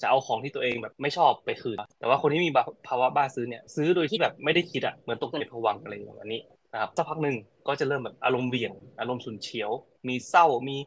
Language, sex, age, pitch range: Thai, male, 20-39, 115-145 Hz